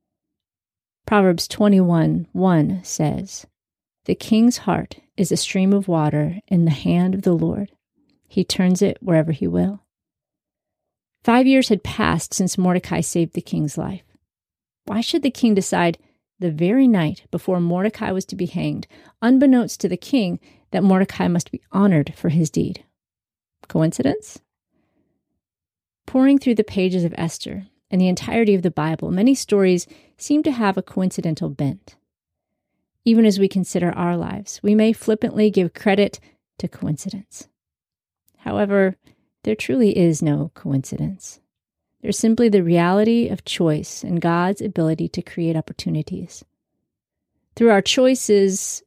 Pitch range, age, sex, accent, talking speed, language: 170-215 Hz, 30-49, female, American, 140 wpm, English